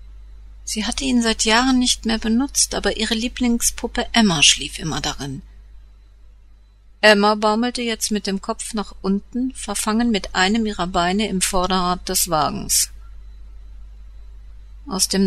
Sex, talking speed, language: female, 135 wpm, German